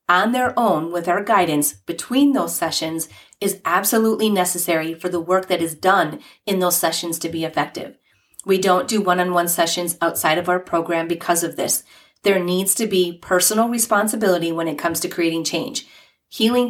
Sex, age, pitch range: female, 30-49, 170-200 Hz